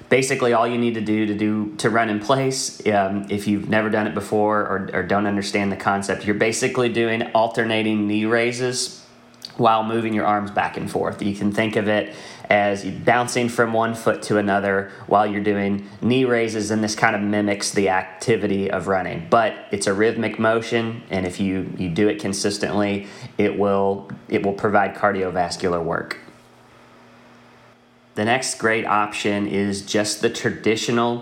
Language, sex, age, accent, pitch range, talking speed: English, male, 30-49, American, 100-115 Hz, 175 wpm